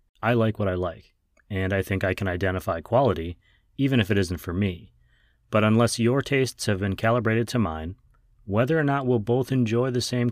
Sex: male